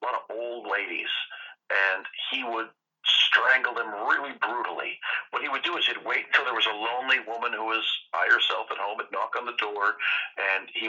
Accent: American